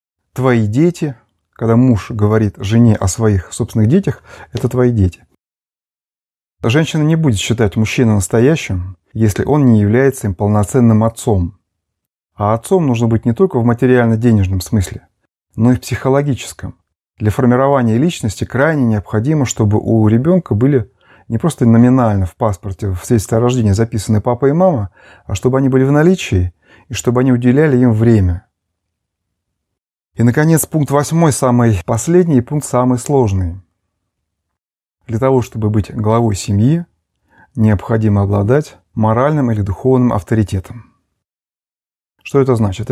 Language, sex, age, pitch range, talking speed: Russian, male, 30-49, 105-130 Hz, 135 wpm